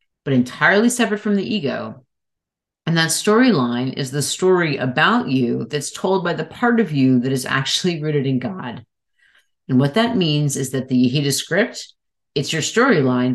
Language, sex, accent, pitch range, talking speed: English, female, American, 130-175 Hz, 175 wpm